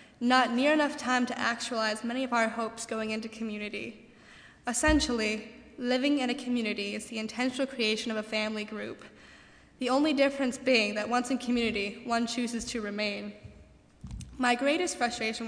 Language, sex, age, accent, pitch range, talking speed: English, female, 10-29, American, 225-260 Hz, 160 wpm